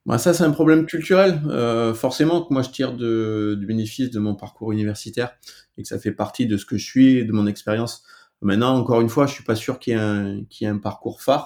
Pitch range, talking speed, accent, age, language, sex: 100-120 Hz, 265 wpm, French, 30-49, French, male